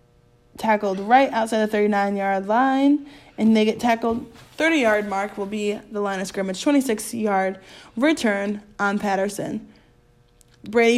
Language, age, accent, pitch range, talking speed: English, 20-39, American, 195-225 Hz, 125 wpm